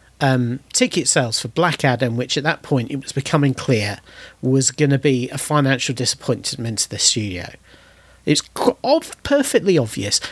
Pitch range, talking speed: 125-160 Hz, 170 wpm